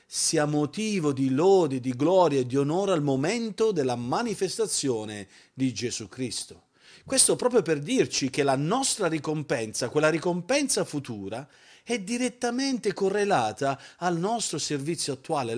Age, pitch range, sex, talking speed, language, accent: 40-59, 130-185 Hz, male, 130 wpm, Italian, native